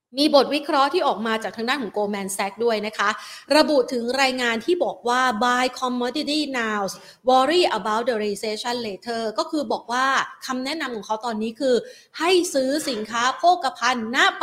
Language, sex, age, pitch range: Thai, female, 30-49, 210-265 Hz